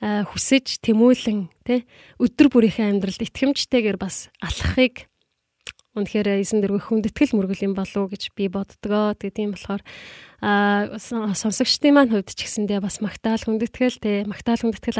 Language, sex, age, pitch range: Korean, female, 20-39, 200-235 Hz